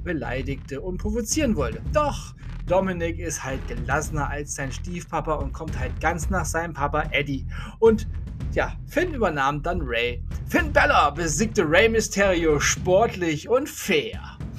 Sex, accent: male, German